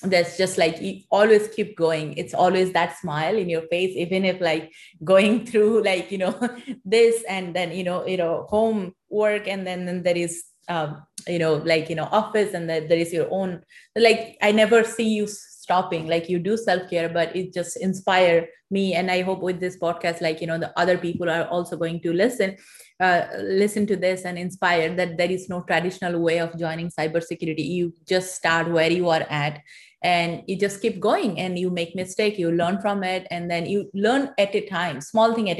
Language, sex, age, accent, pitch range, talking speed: English, female, 20-39, Indian, 170-210 Hz, 210 wpm